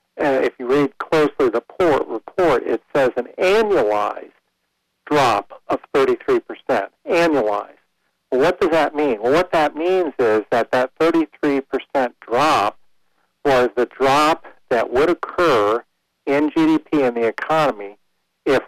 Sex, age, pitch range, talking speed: male, 50-69, 115-145 Hz, 130 wpm